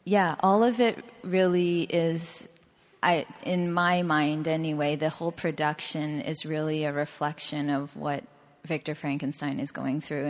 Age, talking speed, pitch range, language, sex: 20-39, 145 wpm, 150-165 Hz, English, female